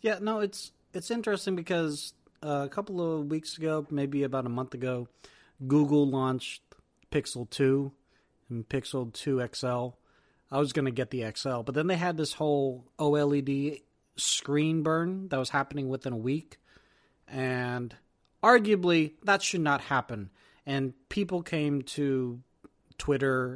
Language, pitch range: English, 125-155 Hz